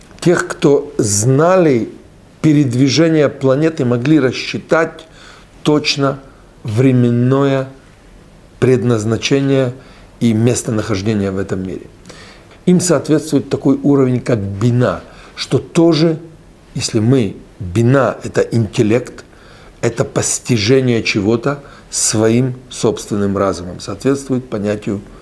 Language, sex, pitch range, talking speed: Russian, male, 105-145 Hz, 85 wpm